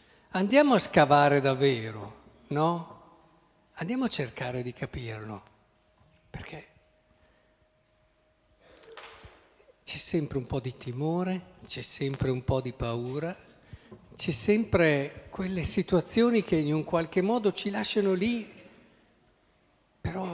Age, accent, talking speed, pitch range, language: 50-69, native, 105 wpm, 140-220 Hz, Italian